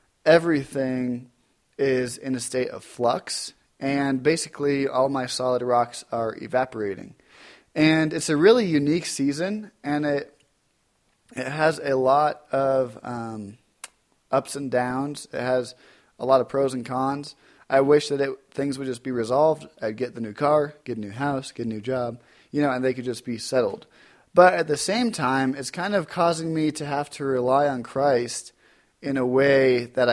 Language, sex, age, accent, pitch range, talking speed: English, male, 20-39, American, 125-145 Hz, 180 wpm